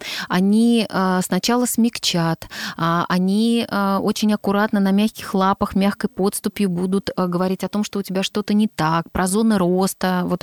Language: Russian